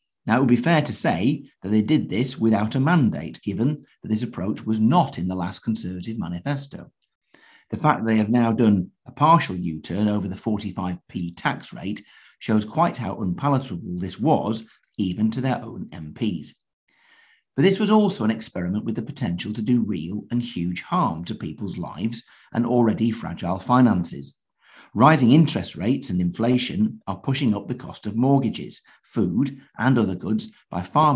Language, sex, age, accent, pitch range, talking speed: English, male, 50-69, British, 105-135 Hz, 175 wpm